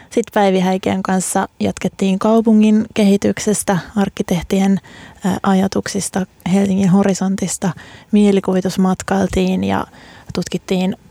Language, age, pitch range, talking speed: Finnish, 20-39, 190-205 Hz, 65 wpm